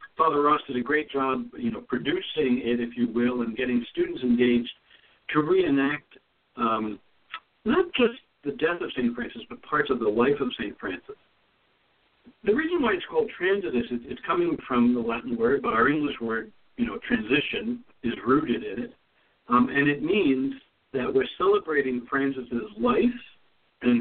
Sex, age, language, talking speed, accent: male, 60-79, English, 170 wpm, American